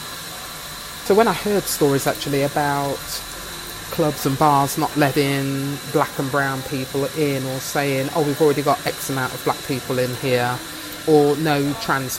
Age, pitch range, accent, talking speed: 30-49, 135-160 Hz, British, 160 wpm